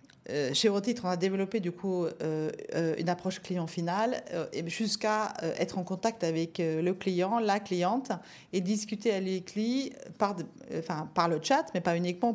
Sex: female